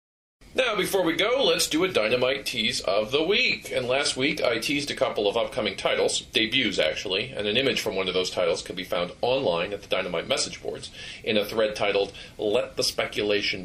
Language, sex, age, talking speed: English, male, 40-59, 210 wpm